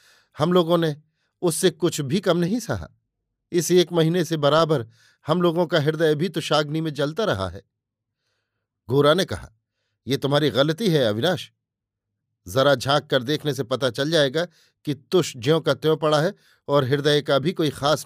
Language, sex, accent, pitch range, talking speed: Hindi, male, native, 120-160 Hz, 175 wpm